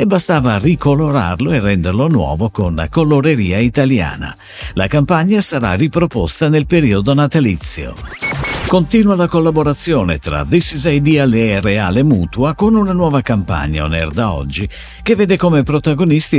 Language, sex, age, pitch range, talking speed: Italian, male, 50-69, 100-155 Hz, 145 wpm